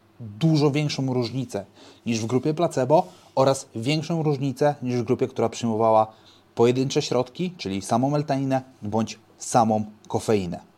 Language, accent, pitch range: Polish, native, 115-145 Hz